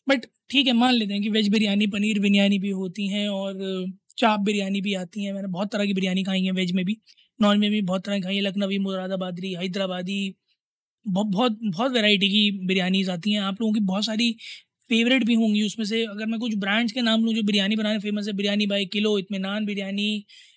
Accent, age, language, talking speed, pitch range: native, 20-39, Hindi, 220 wpm, 195-235 Hz